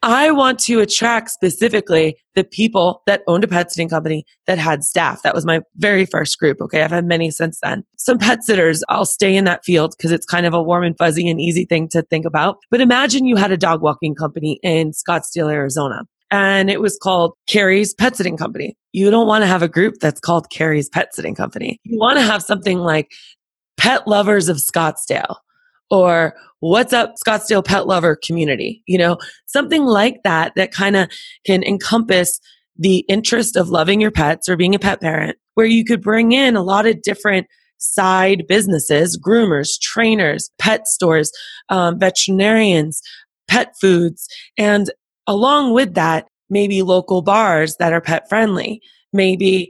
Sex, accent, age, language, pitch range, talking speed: female, American, 20-39, English, 170-215 Hz, 180 wpm